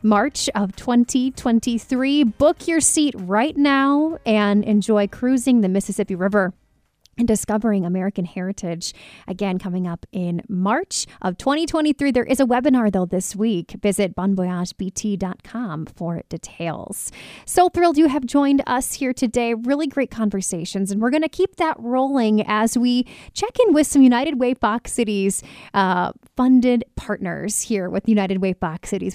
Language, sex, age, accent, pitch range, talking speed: English, female, 30-49, American, 195-260 Hz, 150 wpm